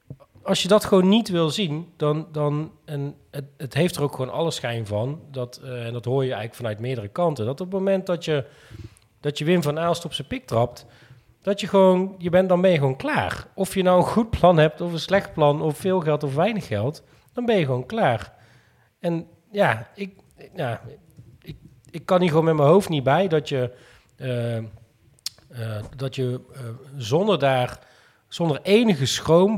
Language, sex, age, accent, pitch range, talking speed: Dutch, male, 40-59, Dutch, 125-170 Hz, 205 wpm